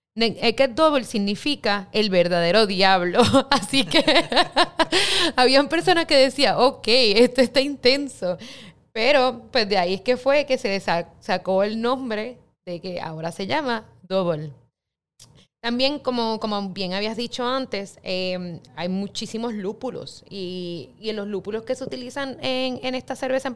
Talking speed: 150 wpm